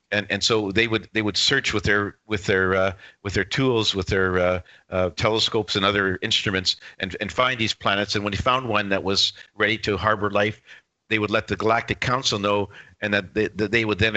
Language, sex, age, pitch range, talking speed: English, male, 50-69, 100-110 Hz, 230 wpm